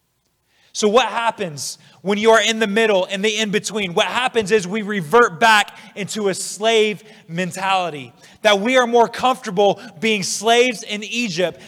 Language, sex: English, male